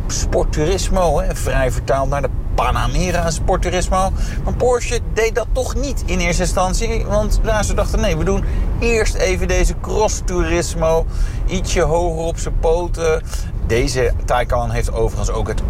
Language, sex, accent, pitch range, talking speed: Dutch, male, Dutch, 105-140 Hz, 145 wpm